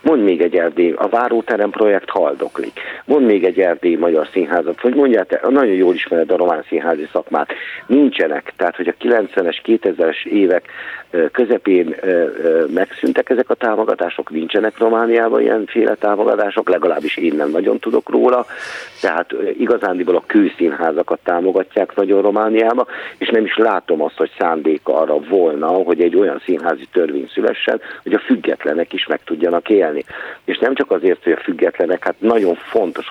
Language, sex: Hungarian, male